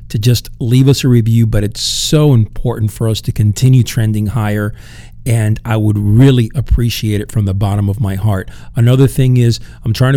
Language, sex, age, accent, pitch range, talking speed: English, male, 50-69, American, 105-120 Hz, 195 wpm